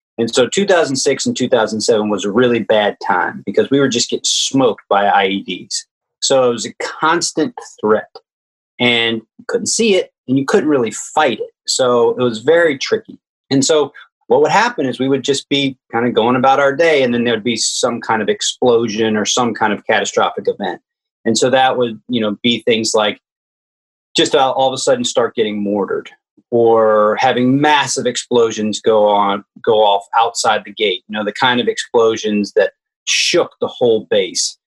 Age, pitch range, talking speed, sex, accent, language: 30-49, 110-175 Hz, 190 wpm, male, American, English